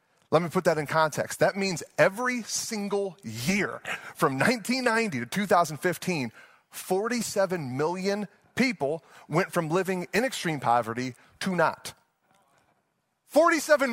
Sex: male